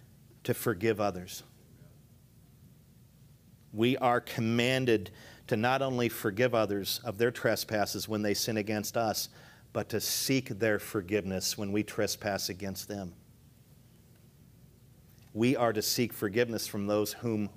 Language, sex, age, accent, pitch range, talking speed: English, male, 50-69, American, 105-125 Hz, 125 wpm